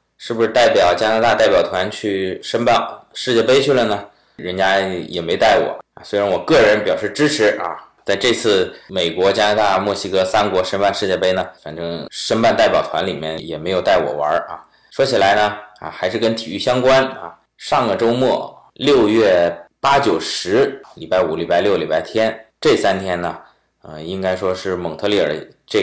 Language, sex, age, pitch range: Chinese, male, 20-39, 85-110 Hz